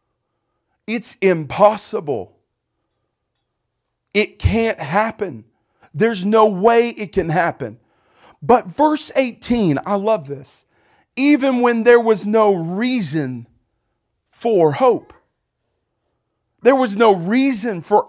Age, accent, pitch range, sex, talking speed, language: 40-59, American, 130-205 Hz, male, 100 wpm, English